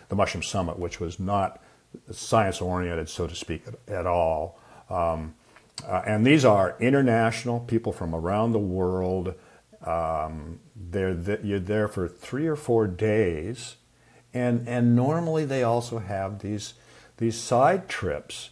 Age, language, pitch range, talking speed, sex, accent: 50-69, English, 90-115 Hz, 145 wpm, male, American